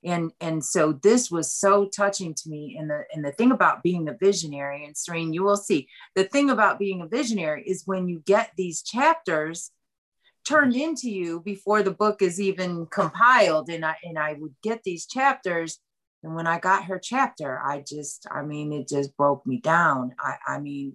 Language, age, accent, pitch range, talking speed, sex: English, 40-59, American, 150-200 Hz, 200 wpm, female